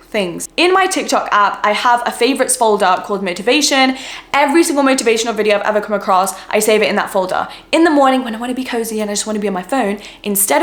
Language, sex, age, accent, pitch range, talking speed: English, female, 10-29, British, 205-275 Hz, 255 wpm